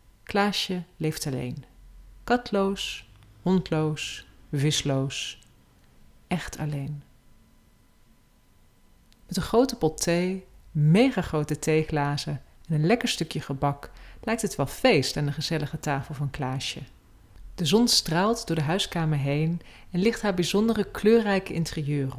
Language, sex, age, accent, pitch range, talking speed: Dutch, female, 40-59, Dutch, 140-200 Hz, 120 wpm